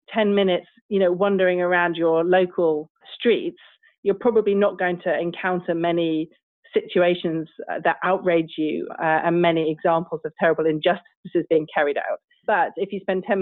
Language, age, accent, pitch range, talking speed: English, 30-49, British, 175-220 Hz, 155 wpm